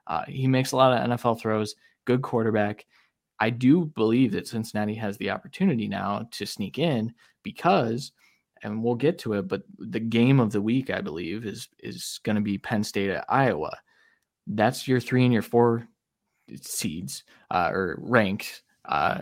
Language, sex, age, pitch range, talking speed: English, male, 20-39, 105-125 Hz, 175 wpm